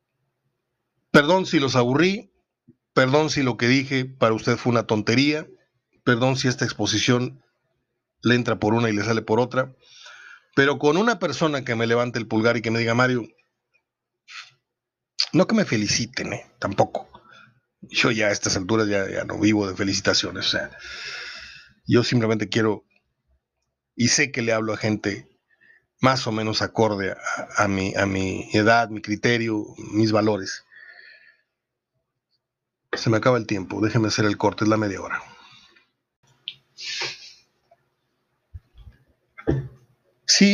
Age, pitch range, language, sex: 40-59, 115-140 Hz, Spanish, male